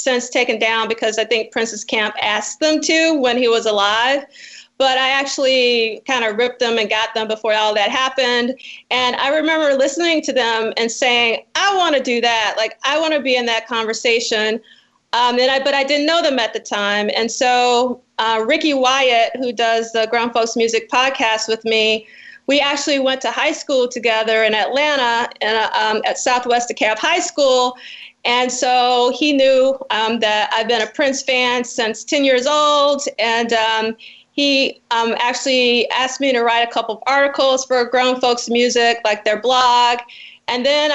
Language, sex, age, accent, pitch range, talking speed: English, female, 40-59, American, 225-275 Hz, 190 wpm